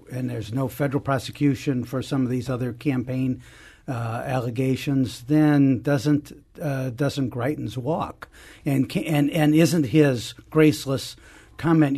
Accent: American